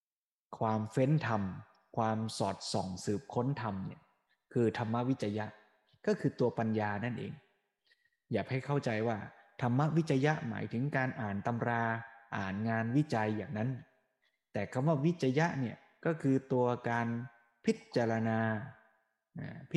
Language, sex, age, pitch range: Thai, male, 20-39, 110-150 Hz